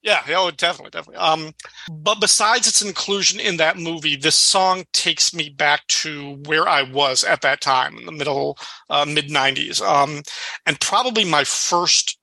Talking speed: 160 wpm